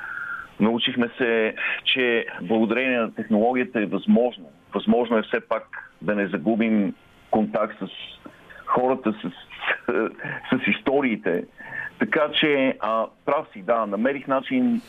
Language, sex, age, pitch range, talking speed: Bulgarian, male, 50-69, 110-135 Hz, 120 wpm